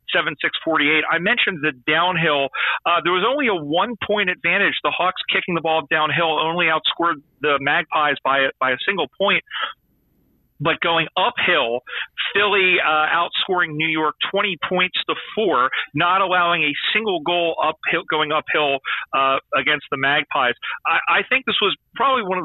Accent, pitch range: American, 145-180 Hz